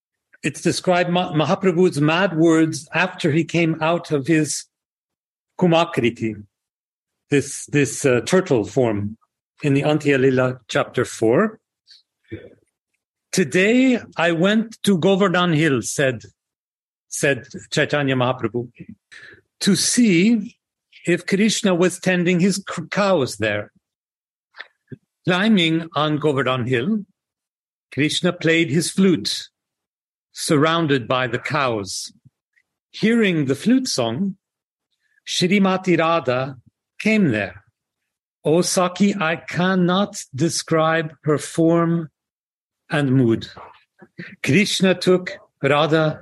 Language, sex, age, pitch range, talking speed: English, male, 50-69, 130-180 Hz, 95 wpm